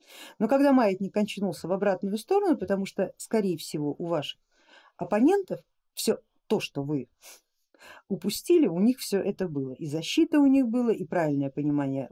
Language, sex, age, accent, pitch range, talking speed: Russian, female, 50-69, native, 170-255 Hz, 160 wpm